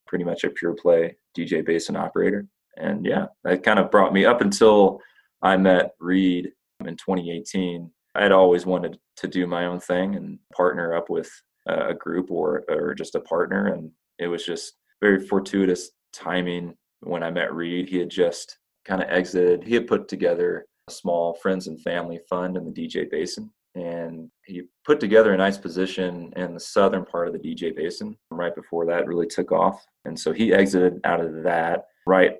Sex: male